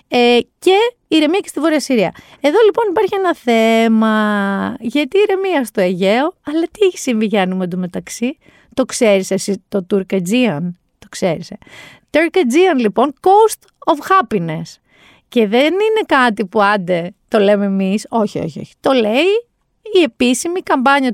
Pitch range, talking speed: 200-325 Hz, 150 wpm